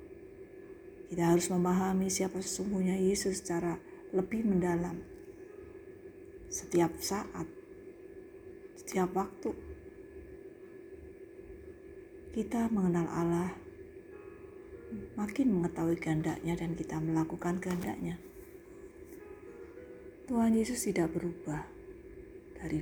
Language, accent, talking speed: Indonesian, native, 75 wpm